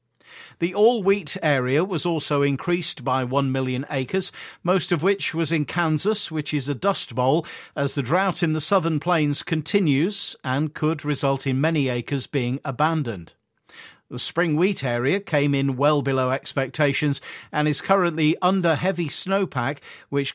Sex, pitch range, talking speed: male, 135-170 Hz, 155 wpm